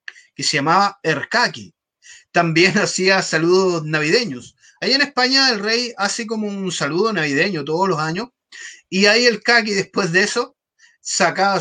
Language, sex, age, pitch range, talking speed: Spanish, male, 30-49, 165-235 Hz, 150 wpm